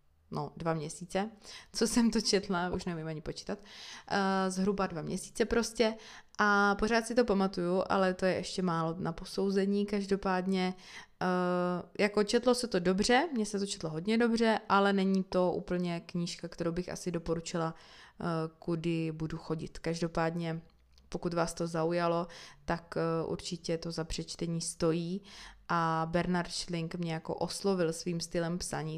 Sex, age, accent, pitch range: female, 20-39, native, 170-200 Hz